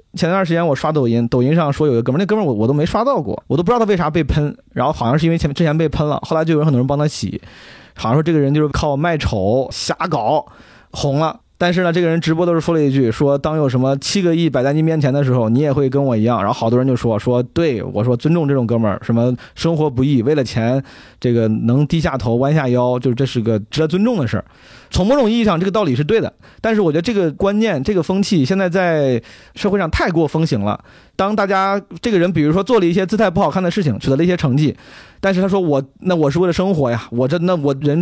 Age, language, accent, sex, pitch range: 30-49, Chinese, native, male, 125-170 Hz